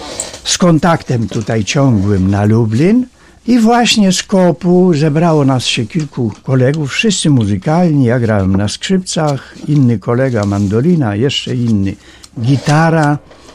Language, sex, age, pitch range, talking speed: Polish, male, 60-79, 115-175 Hz, 120 wpm